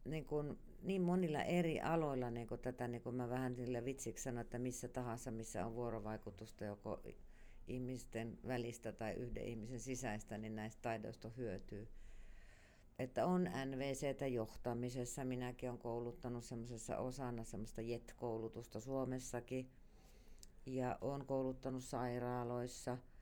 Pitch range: 110-130 Hz